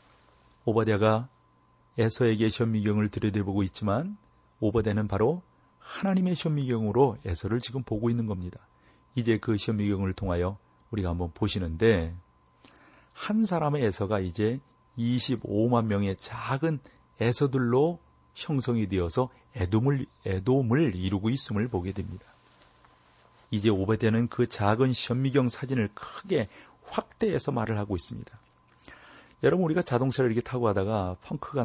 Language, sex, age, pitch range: Korean, male, 40-59, 100-135 Hz